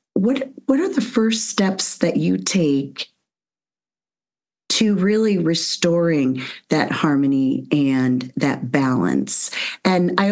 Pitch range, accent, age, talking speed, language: 145-190 Hz, American, 40-59, 110 wpm, English